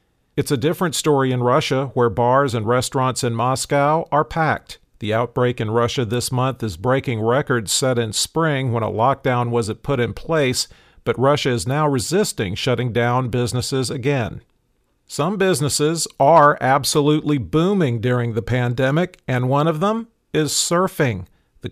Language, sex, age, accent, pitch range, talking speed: English, male, 50-69, American, 120-145 Hz, 155 wpm